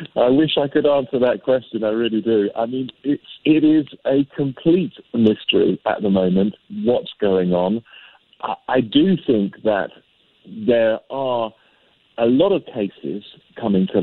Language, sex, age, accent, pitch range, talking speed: English, male, 50-69, British, 120-145 Hz, 155 wpm